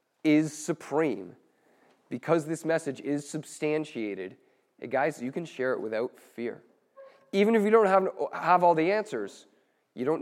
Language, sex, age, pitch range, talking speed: English, male, 30-49, 135-185 Hz, 140 wpm